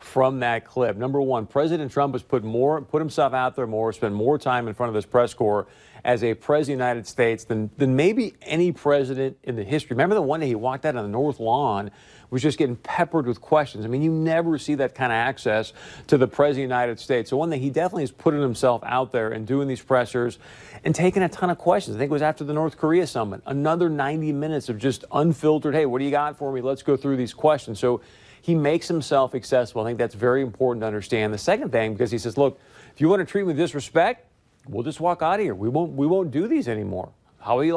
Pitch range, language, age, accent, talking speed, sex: 120-150 Hz, English, 40-59, American, 255 wpm, male